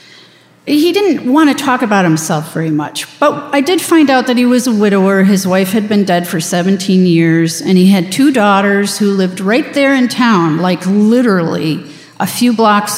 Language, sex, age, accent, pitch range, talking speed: English, female, 50-69, American, 170-230 Hz, 200 wpm